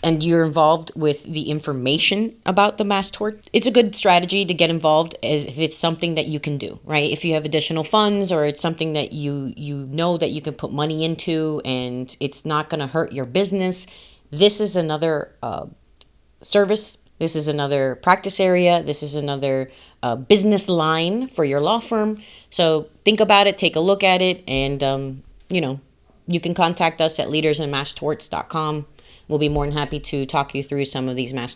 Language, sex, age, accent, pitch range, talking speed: English, female, 30-49, American, 135-170 Hz, 200 wpm